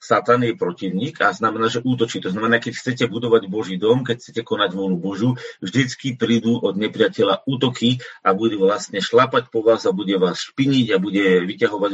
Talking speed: 185 wpm